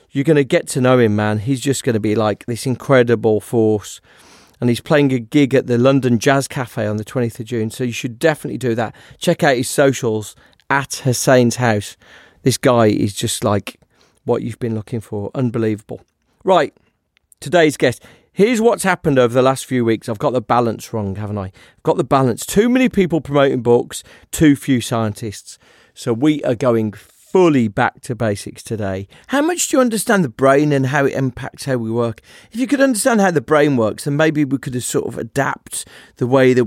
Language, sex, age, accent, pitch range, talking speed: English, male, 40-59, British, 115-150 Hz, 210 wpm